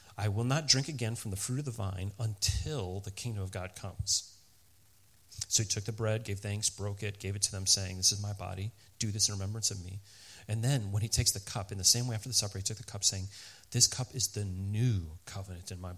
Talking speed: 255 wpm